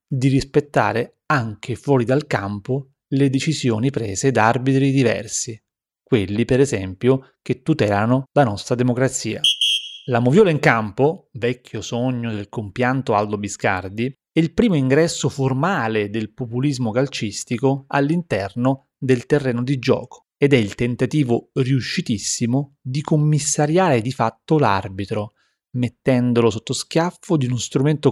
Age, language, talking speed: 30-49, Italian, 125 wpm